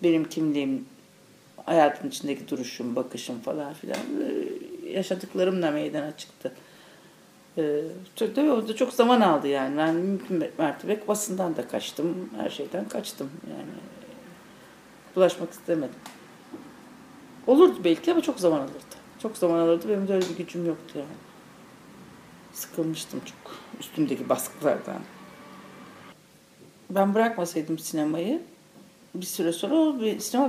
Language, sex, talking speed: Turkish, female, 110 wpm